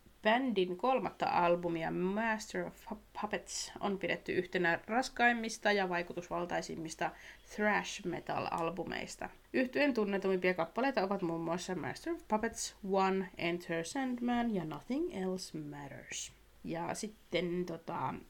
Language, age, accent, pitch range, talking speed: Finnish, 30-49, native, 175-225 Hz, 110 wpm